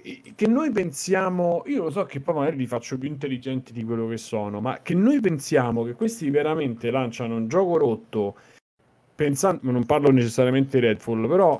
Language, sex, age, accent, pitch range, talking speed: Italian, male, 40-59, native, 120-150 Hz, 180 wpm